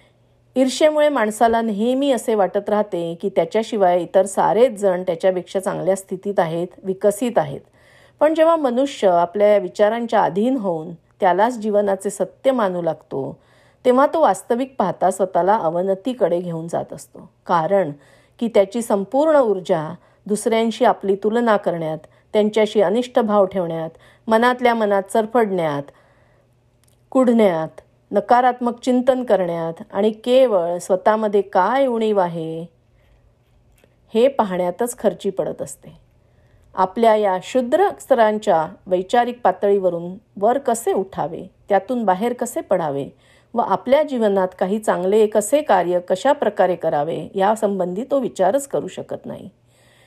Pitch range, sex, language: 180-235 Hz, female, Marathi